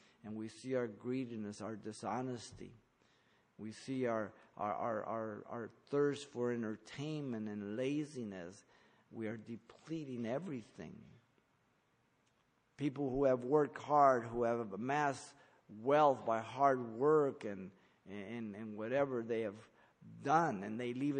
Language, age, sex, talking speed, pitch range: English, 50-69, male, 125 wpm, 115-140 Hz